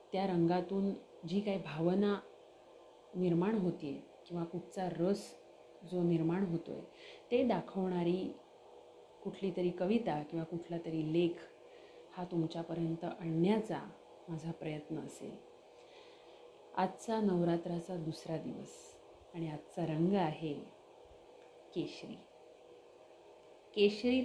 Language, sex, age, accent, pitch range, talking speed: Marathi, female, 30-49, native, 160-180 Hz, 95 wpm